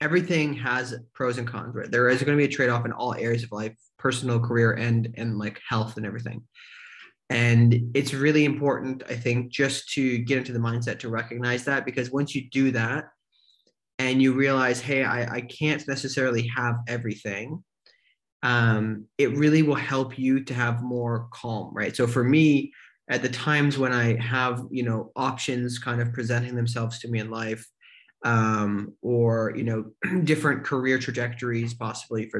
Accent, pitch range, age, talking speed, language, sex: American, 115-135 Hz, 20-39, 175 wpm, English, male